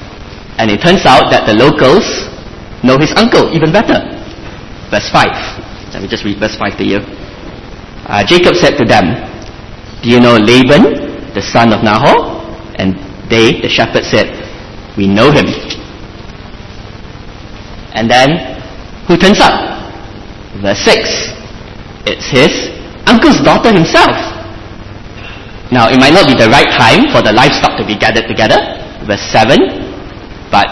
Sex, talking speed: male, 145 wpm